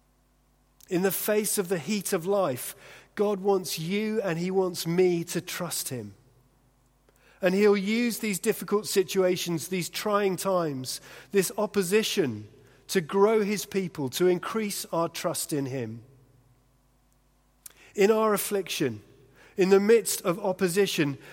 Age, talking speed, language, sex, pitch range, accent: 40-59, 130 wpm, English, male, 140-200 Hz, British